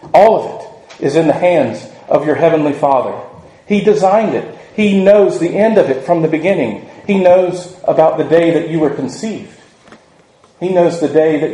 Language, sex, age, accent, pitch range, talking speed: English, male, 40-59, American, 155-185 Hz, 190 wpm